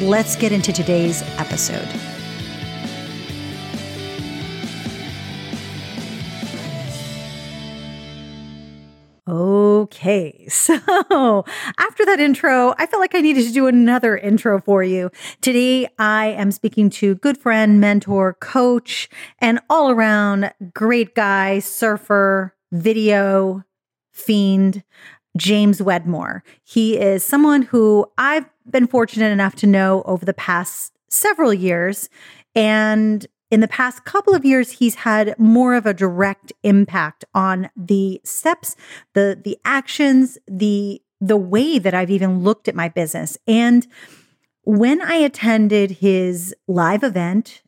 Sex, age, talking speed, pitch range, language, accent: female, 40-59, 115 wpm, 195-240 Hz, English, American